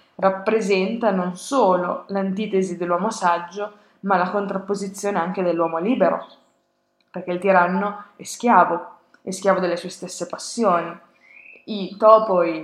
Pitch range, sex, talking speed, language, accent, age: 175-205 Hz, female, 120 wpm, Italian, native, 20-39